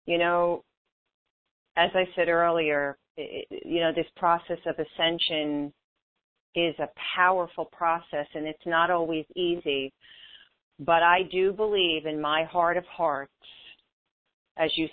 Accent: American